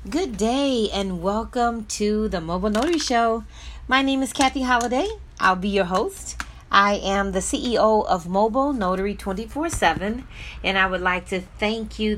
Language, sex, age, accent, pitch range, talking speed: English, female, 40-59, American, 165-210 Hz, 165 wpm